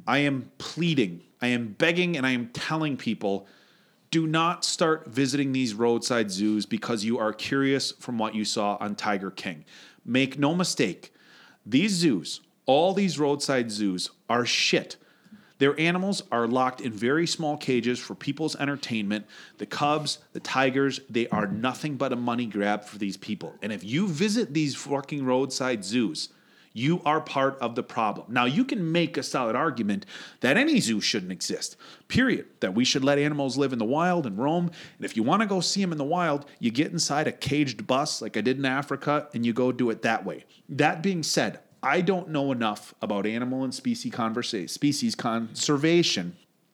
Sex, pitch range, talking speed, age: male, 115-155 Hz, 185 wpm, 30-49